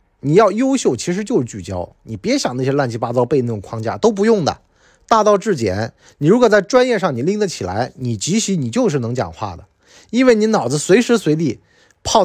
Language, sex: Chinese, male